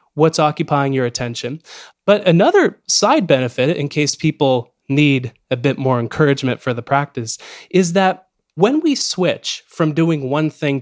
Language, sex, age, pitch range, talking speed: English, male, 20-39, 130-165 Hz, 155 wpm